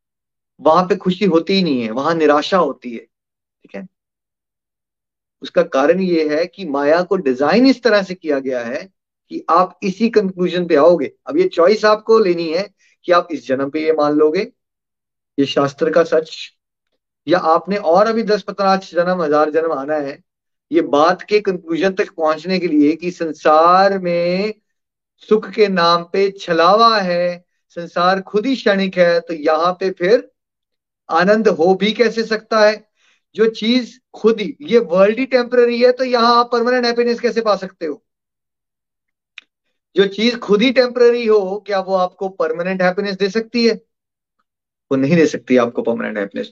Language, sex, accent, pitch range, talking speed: Hindi, male, native, 170-230 Hz, 165 wpm